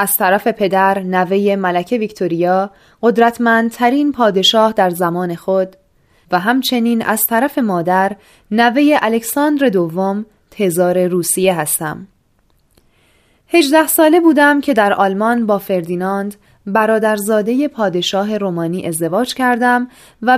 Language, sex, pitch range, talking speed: Persian, female, 190-250 Hz, 105 wpm